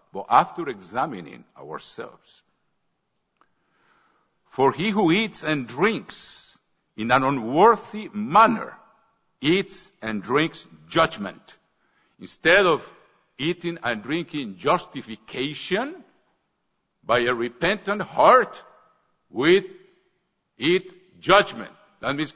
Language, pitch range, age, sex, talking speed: English, 130-195 Hz, 60-79, male, 90 wpm